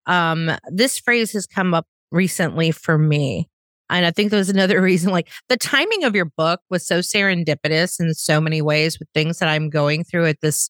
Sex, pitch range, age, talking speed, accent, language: female, 160-205 Hz, 30-49, 200 wpm, American, English